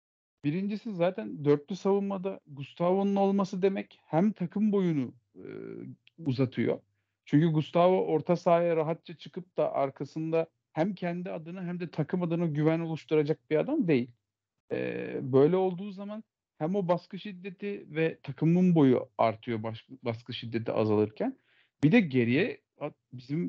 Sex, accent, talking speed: male, native, 125 wpm